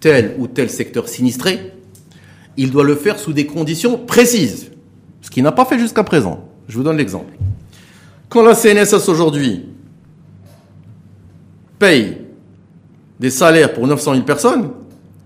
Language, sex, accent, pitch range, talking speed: French, male, French, 120-205 Hz, 140 wpm